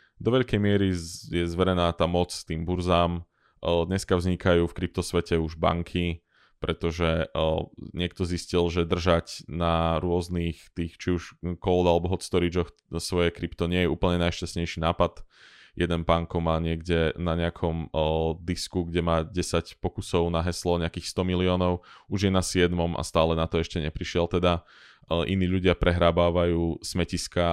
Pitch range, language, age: 85-90 Hz, Slovak, 20-39